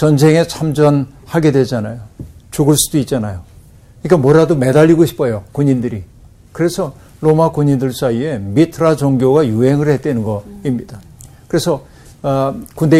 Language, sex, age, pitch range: Korean, male, 50-69, 115-155 Hz